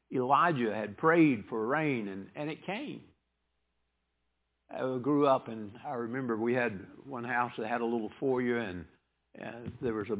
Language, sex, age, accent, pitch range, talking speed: English, male, 60-79, American, 95-145 Hz, 170 wpm